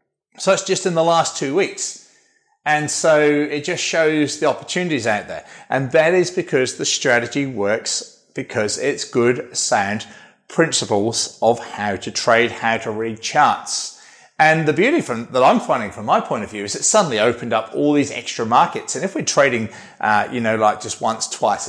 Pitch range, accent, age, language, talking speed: 115-160 Hz, British, 30-49, English, 190 wpm